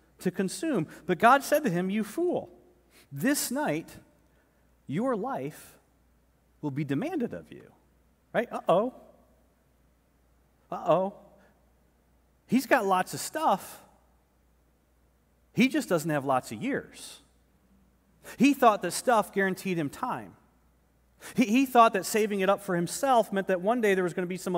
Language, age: English, 40-59